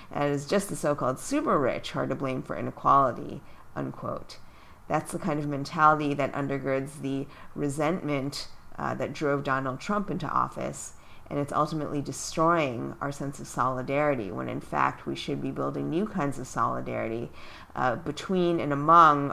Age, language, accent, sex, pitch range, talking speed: 40-59, English, American, female, 135-170 Hz, 160 wpm